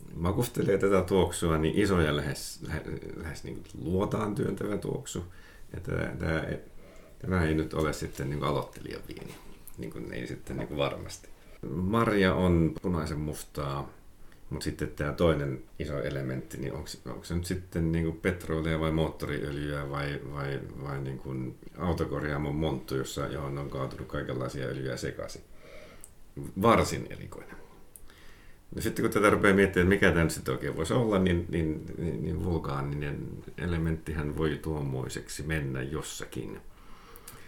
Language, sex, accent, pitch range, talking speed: Finnish, male, native, 75-95 Hz, 135 wpm